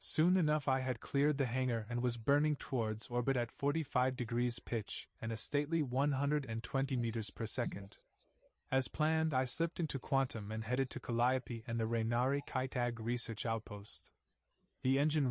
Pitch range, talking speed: 115-140 Hz, 160 wpm